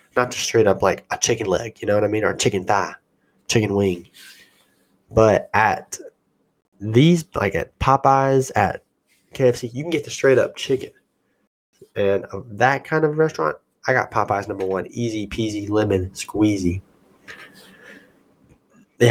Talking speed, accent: 155 wpm, American